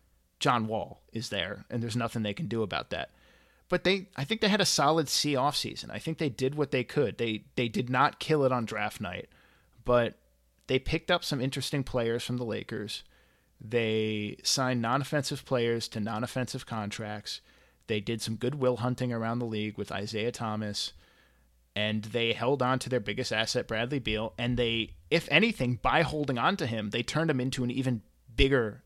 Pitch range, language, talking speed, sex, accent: 110-130 Hz, English, 190 wpm, male, American